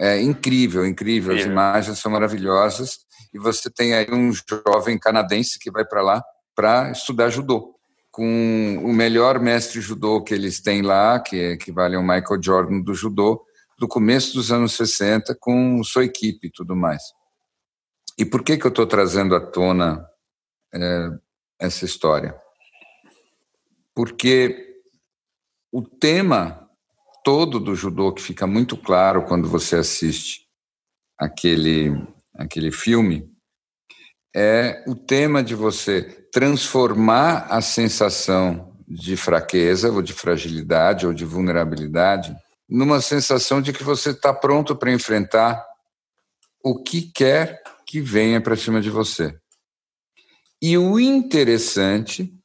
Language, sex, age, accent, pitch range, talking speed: Portuguese, male, 50-69, Brazilian, 95-125 Hz, 130 wpm